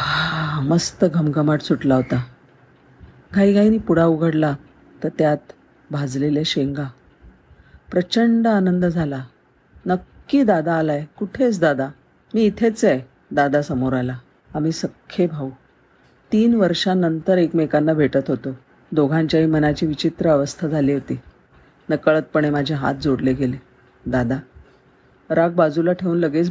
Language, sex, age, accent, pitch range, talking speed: Marathi, female, 50-69, native, 140-175 Hz, 110 wpm